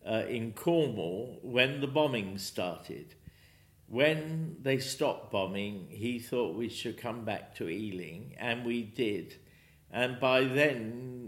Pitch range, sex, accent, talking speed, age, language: 105-155 Hz, male, British, 135 wpm, 50-69, English